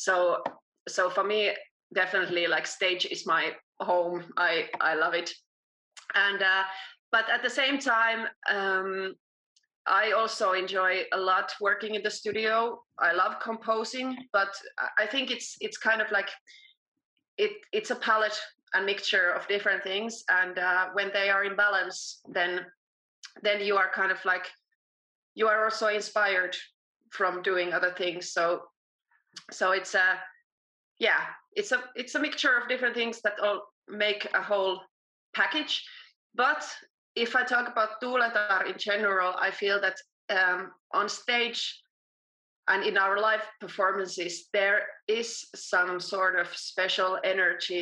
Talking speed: 150 wpm